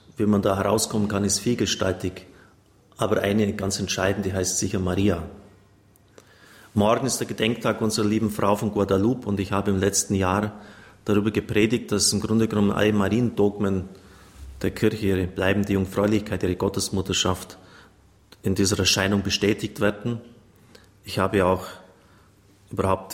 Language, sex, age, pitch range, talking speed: German, male, 30-49, 95-105 Hz, 140 wpm